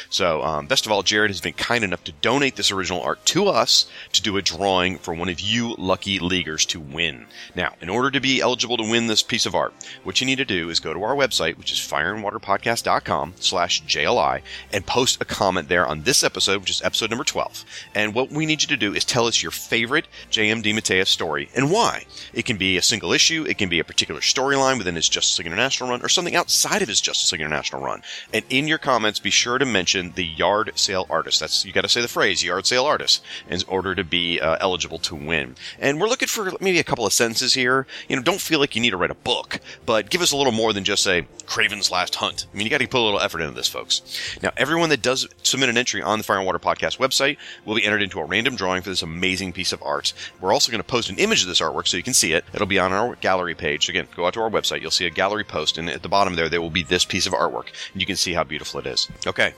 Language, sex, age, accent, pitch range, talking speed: English, male, 30-49, American, 90-125 Hz, 270 wpm